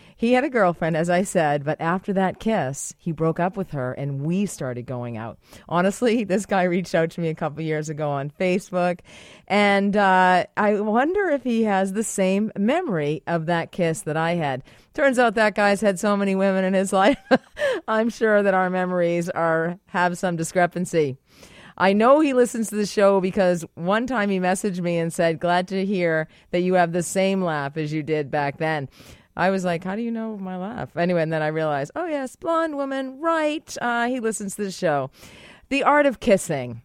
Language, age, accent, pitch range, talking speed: English, 40-59, American, 160-220 Hz, 210 wpm